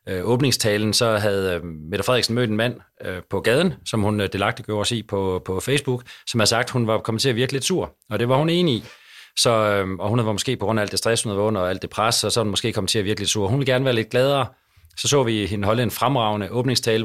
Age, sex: 30-49, male